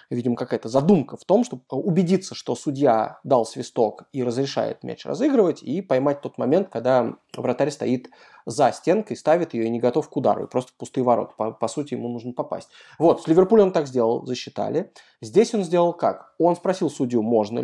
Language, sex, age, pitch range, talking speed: Russian, male, 20-39, 125-175 Hz, 195 wpm